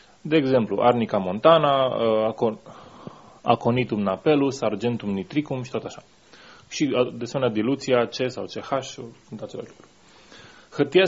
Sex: male